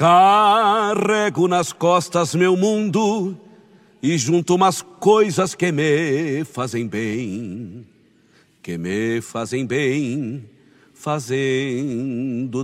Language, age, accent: Portuguese, 60-79, Brazilian